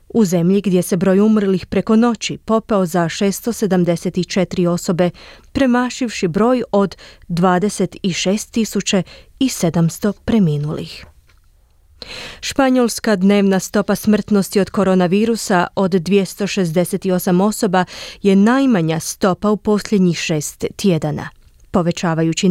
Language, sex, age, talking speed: Croatian, female, 20-39, 90 wpm